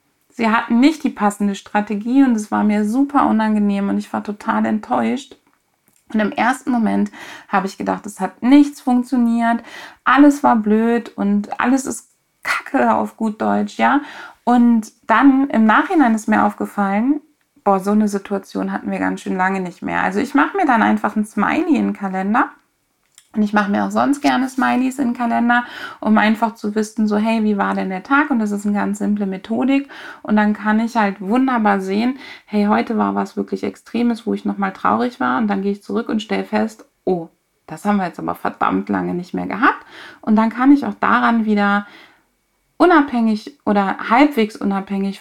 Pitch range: 200-245 Hz